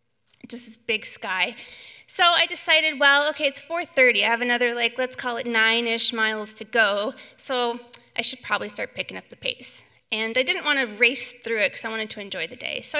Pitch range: 225-285 Hz